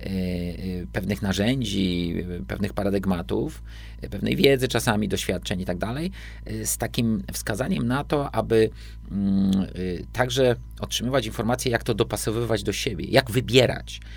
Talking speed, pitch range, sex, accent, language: 115 wpm, 95-120 Hz, male, native, Polish